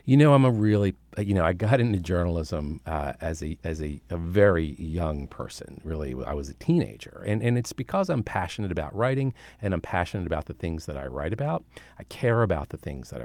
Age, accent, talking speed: 40-59, American, 220 wpm